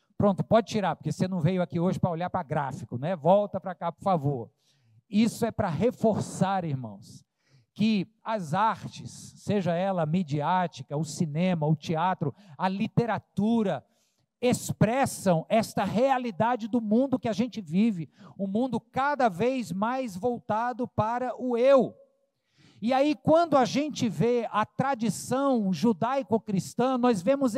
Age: 50-69